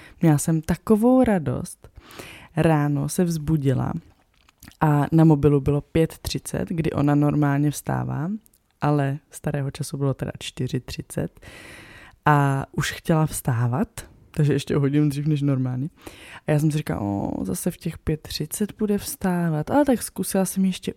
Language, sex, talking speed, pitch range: Czech, female, 140 wpm, 145-175 Hz